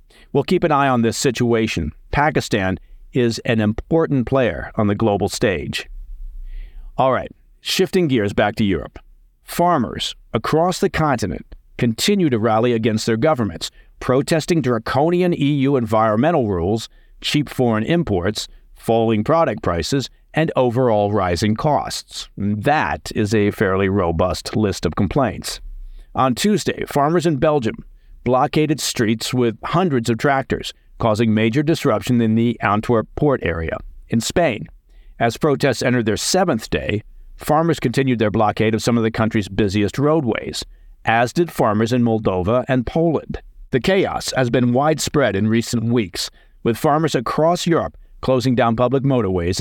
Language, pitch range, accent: English, 110-145 Hz, American